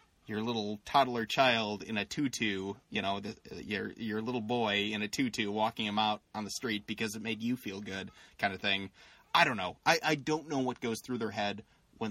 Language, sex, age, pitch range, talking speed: English, male, 30-49, 105-125 Hz, 225 wpm